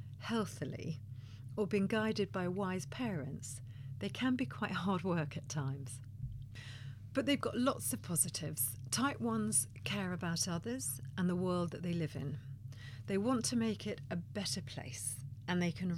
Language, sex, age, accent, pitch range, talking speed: English, female, 40-59, British, 125-185 Hz, 165 wpm